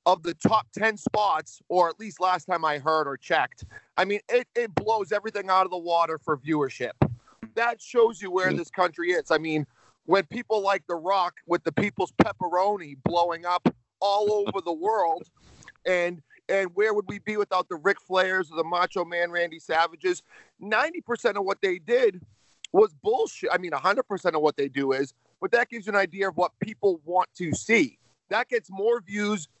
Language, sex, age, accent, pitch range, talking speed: English, male, 40-59, American, 170-205 Hz, 195 wpm